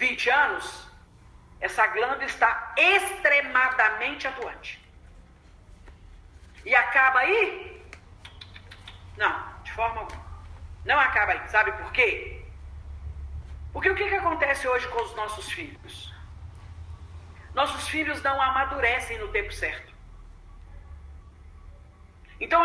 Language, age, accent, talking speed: Portuguese, 40-59, Brazilian, 100 wpm